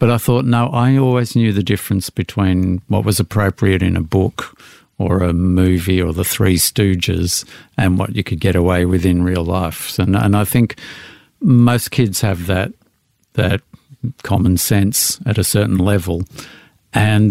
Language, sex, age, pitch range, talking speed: English, male, 50-69, 90-110 Hz, 170 wpm